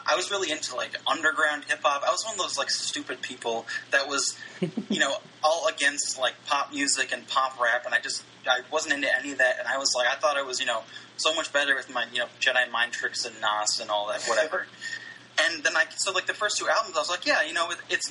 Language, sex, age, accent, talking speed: English, male, 20-39, American, 260 wpm